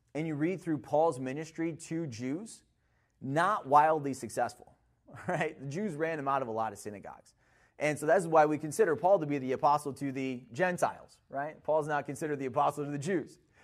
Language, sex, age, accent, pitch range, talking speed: English, male, 30-49, American, 145-215 Hz, 195 wpm